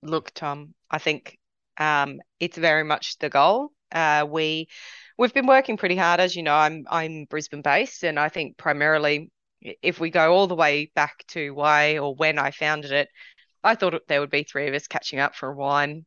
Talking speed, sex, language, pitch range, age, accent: 205 wpm, female, English, 150-175 Hz, 20-39, Australian